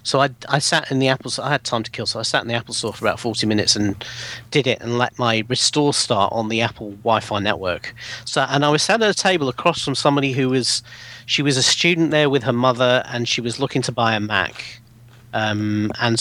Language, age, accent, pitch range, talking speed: English, 40-59, British, 110-130 Hz, 250 wpm